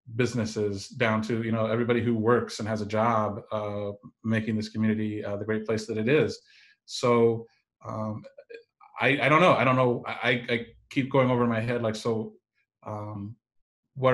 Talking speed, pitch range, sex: 185 wpm, 105-120 Hz, male